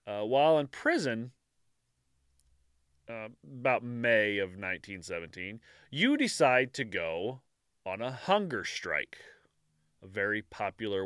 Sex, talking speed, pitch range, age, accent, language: male, 110 wpm, 105-145 Hz, 30-49, American, English